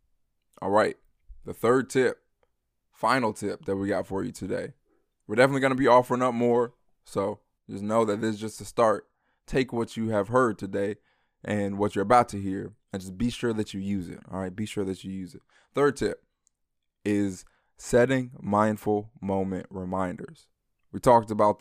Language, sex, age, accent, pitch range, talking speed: English, male, 20-39, American, 100-115 Hz, 190 wpm